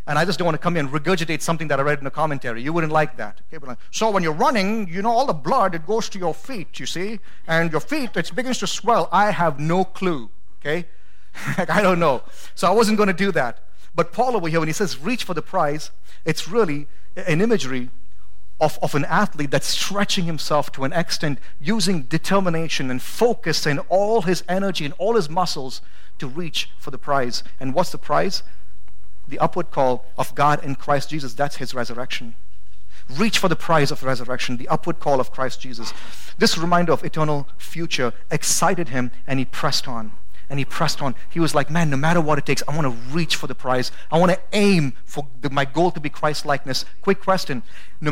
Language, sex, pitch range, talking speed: English, male, 125-180 Hz, 220 wpm